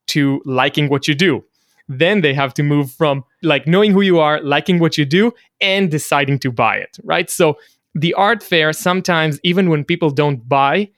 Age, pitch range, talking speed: 20-39, 135-165 Hz, 195 wpm